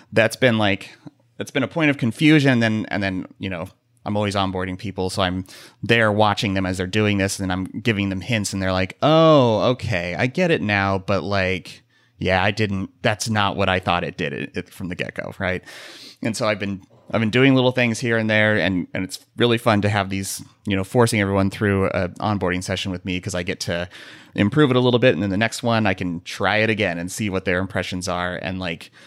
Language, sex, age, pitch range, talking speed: English, male, 30-49, 95-120 Hz, 240 wpm